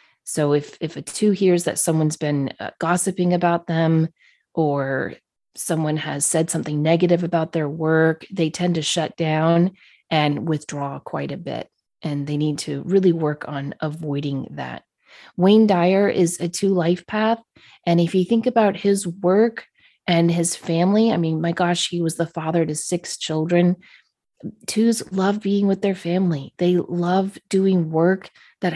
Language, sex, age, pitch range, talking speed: English, female, 30-49, 160-190 Hz, 165 wpm